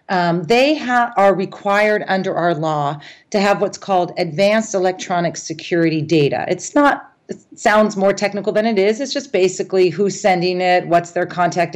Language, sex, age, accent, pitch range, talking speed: English, female, 40-59, American, 160-200 Hz, 165 wpm